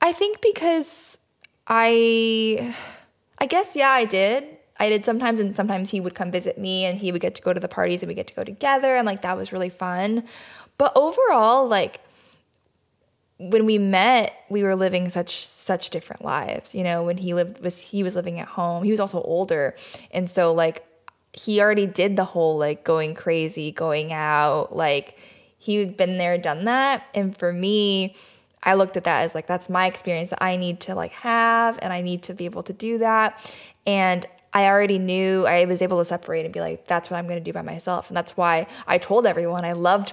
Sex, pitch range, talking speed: female, 175-220 Hz, 210 wpm